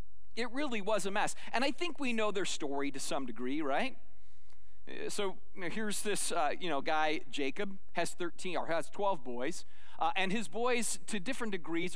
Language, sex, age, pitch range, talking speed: English, male, 30-49, 160-230 Hz, 195 wpm